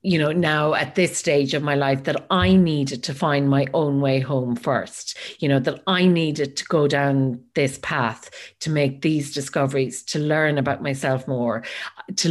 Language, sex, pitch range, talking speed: English, female, 135-165 Hz, 190 wpm